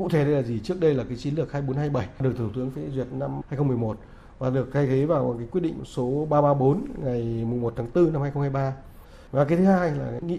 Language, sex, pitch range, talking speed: Vietnamese, male, 125-160 Hz, 245 wpm